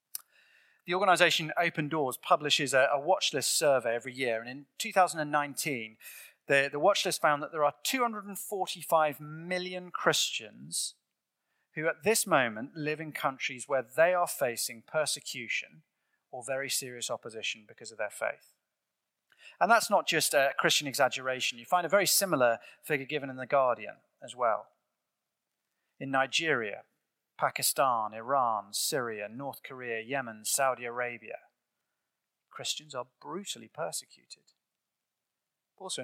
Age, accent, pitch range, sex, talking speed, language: 30-49, British, 125-165 Hz, male, 130 wpm, English